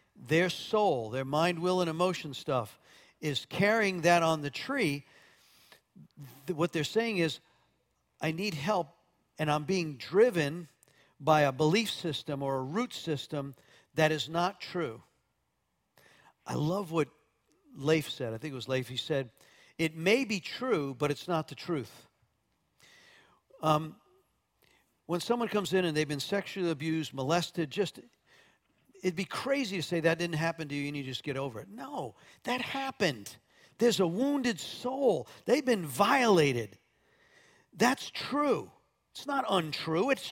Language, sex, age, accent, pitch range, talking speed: English, male, 50-69, American, 150-215 Hz, 155 wpm